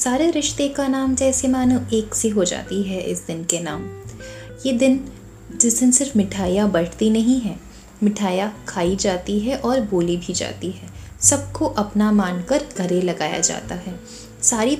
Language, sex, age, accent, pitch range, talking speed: Hindi, female, 20-39, native, 180-245 Hz, 170 wpm